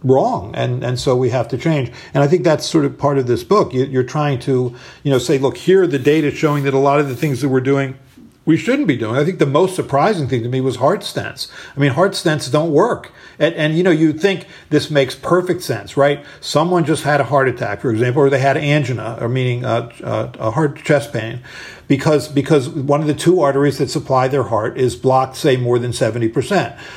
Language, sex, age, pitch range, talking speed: English, male, 50-69, 130-155 Hz, 245 wpm